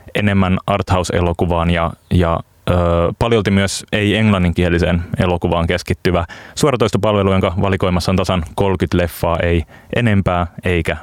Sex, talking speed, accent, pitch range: male, 110 wpm, native, 85-100 Hz